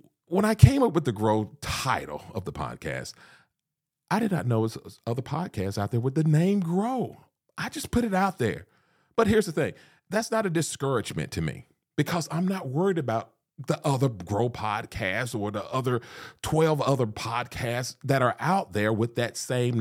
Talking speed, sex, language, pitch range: 190 wpm, male, English, 100-150 Hz